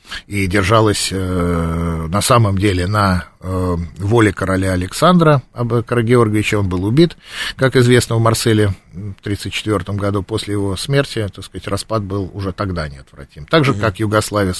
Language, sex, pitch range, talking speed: Russian, male, 85-110 Hz, 150 wpm